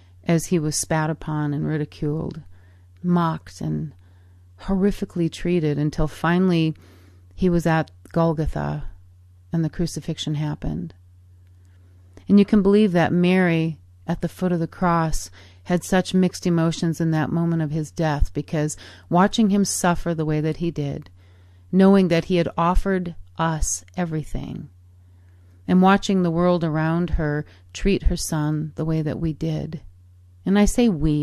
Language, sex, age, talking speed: English, female, 40-59, 150 wpm